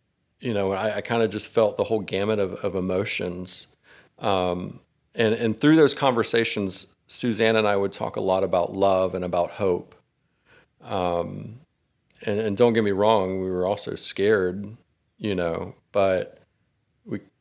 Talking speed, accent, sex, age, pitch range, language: 160 wpm, American, male, 40-59, 95-110 Hz, English